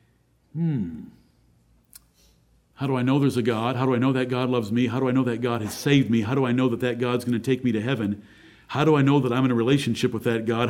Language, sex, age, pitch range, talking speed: English, male, 50-69, 115-140 Hz, 280 wpm